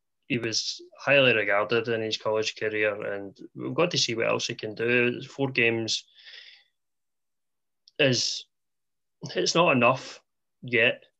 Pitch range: 105-120 Hz